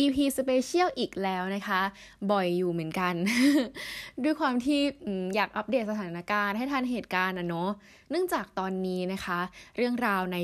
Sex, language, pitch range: female, Thai, 180-245 Hz